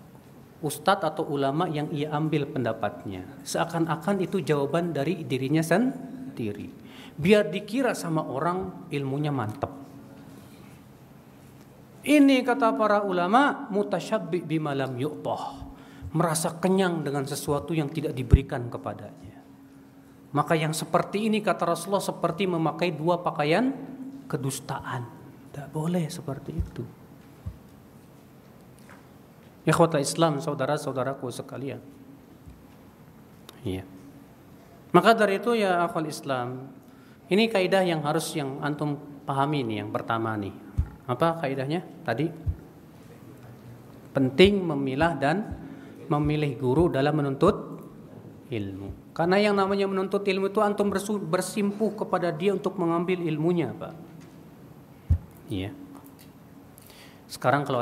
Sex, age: male, 40-59